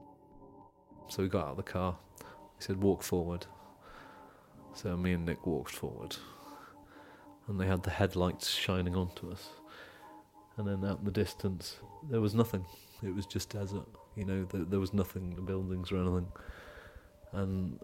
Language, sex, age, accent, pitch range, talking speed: English, male, 30-49, British, 90-105 Hz, 165 wpm